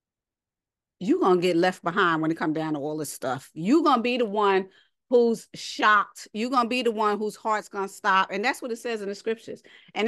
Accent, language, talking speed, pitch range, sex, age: American, English, 250 wpm, 205-255 Hz, female, 40-59